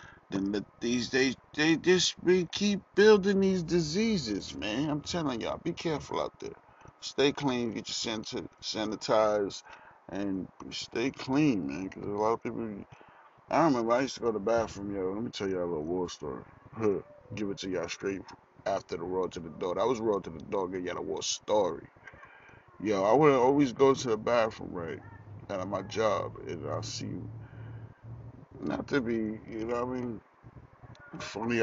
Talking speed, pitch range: 190 wpm, 110-145 Hz